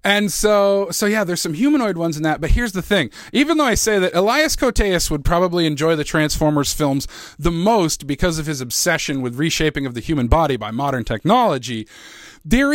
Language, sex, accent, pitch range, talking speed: English, male, American, 155-220 Hz, 200 wpm